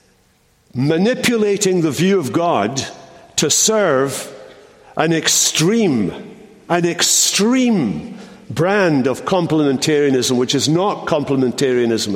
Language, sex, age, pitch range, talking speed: English, male, 60-79, 140-195 Hz, 90 wpm